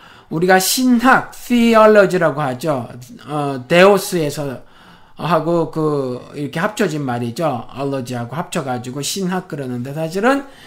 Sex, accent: male, native